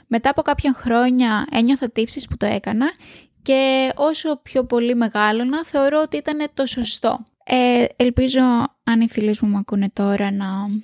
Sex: female